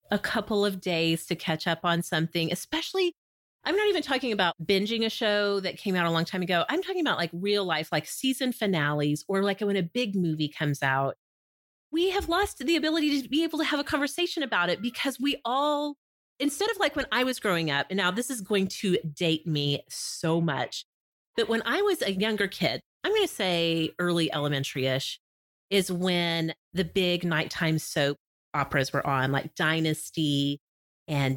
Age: 30-49